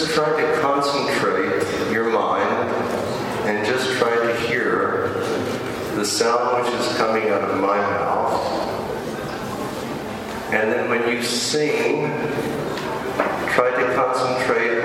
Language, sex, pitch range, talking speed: Hungarian, male, 100-120 Hz, 115 wpm